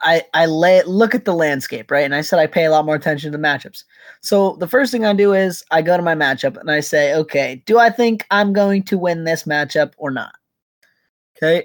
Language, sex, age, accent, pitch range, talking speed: English, male, 20-39, American, 145-200 Hz, 245 wpm